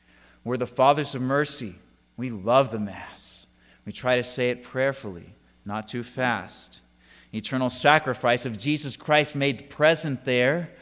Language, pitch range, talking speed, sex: English, 110-145 Hz, 145 wpm, male